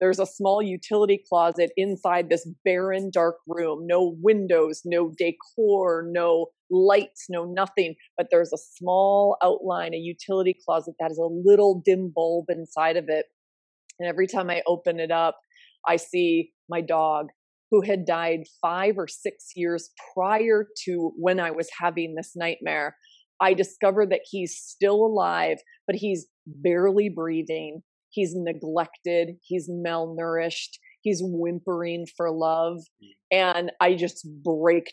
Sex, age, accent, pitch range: female, 30-49, American, 165-200 Hz